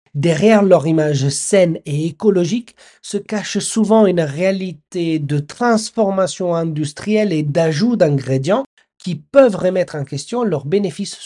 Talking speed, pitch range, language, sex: 130 wpm, 145-200 Hz, French, male